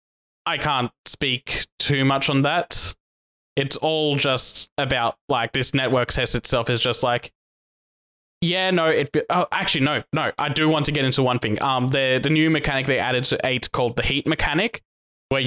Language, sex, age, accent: English, male, 20-39, Australian